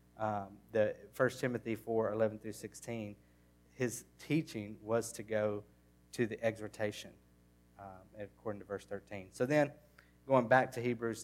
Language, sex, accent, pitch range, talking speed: English, male, American, 95-150 Hz, 140 wpm